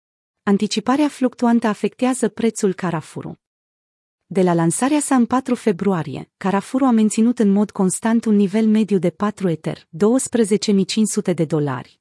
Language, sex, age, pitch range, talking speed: Romanian, female, 30-49, 180-230 Hz, 135 wpm